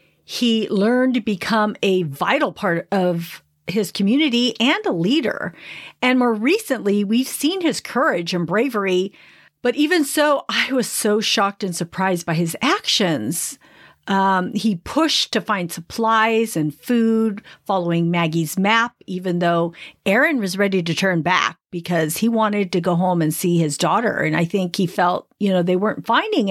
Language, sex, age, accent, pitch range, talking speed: English, female, 50-69, American, 185-250 Hz, 165 wpm